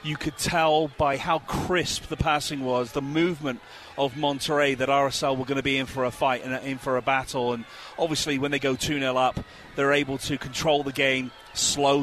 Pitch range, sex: 130-145 Hz, male